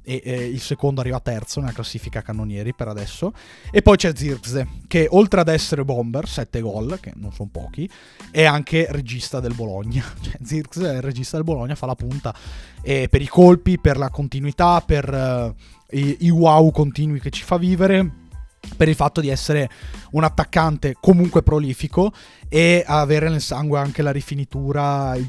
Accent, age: native, 20-39